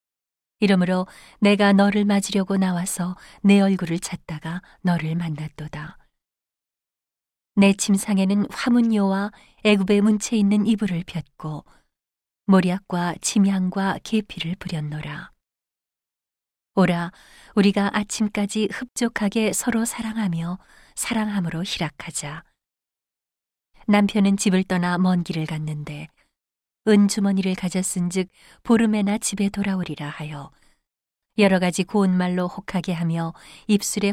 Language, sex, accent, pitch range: Korean, female, native, 170-205 Hz